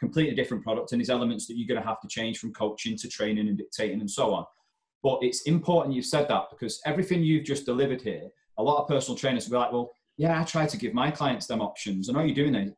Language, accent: English, British